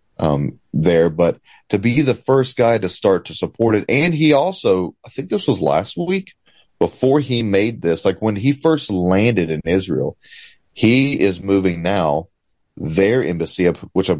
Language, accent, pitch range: English, American, 85-120 Hz